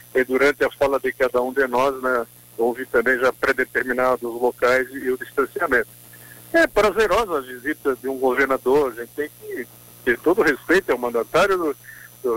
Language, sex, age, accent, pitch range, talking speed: Portuguese, male, 50-69, Brazilian, 125-155 Hz, 185 wpm